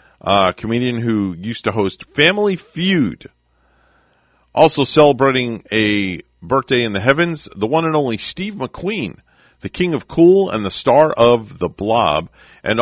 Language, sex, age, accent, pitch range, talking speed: English, male, 40-59, American, 90-135 Hz, 150 wpm